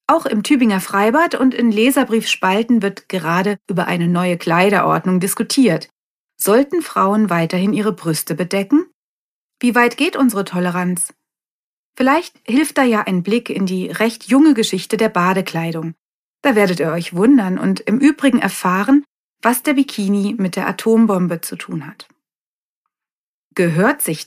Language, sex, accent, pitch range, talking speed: German, female, German, 180-250 Hz, 145 wpm